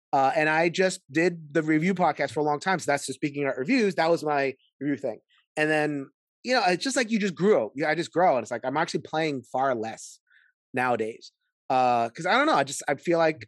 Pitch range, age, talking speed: 135-180 Hz, 30-49, 250 wpm